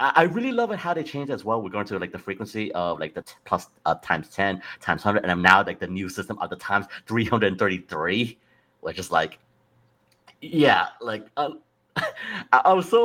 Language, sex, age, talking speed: English, male, 30-49, 200 wpm